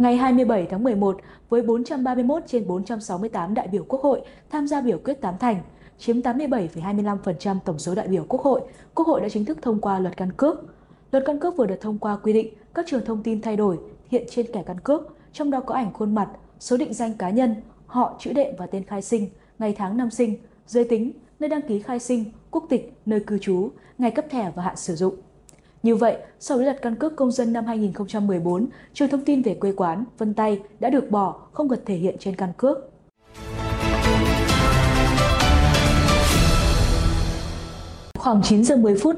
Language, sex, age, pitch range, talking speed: Vietnamese, female, 20-39, 190-250 Hz, 200 wpm